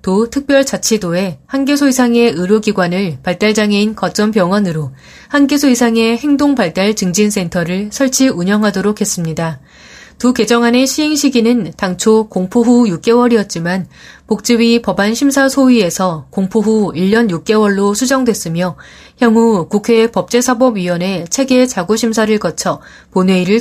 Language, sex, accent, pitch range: Korean, female, native, 180-240 Hz